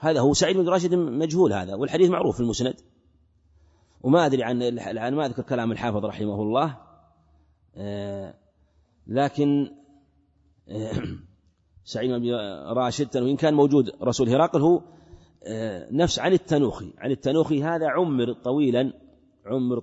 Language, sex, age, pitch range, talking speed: Arabic, male, 30-49, 85-140 Hz, 120 wpm